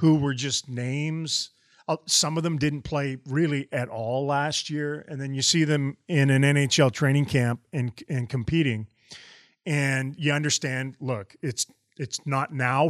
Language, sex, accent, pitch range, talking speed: English, male, American, 125-155 Hz, 165 wpm